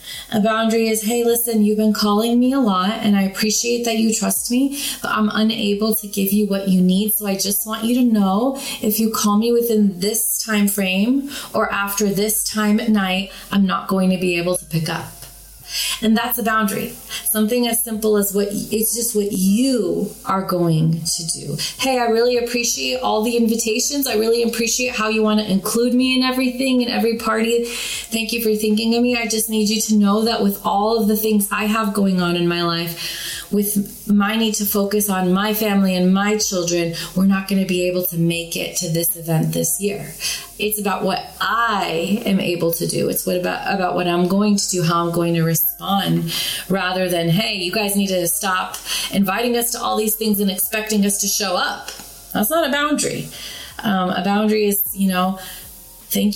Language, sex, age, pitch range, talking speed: English, female, 20-39, 190-225 Hz, 210 wpm